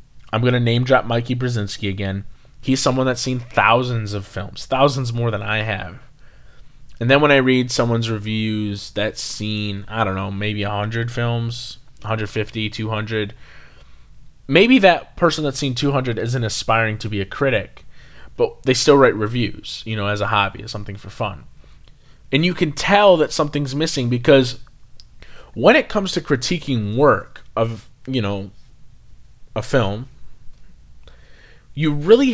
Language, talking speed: English, 155 wpm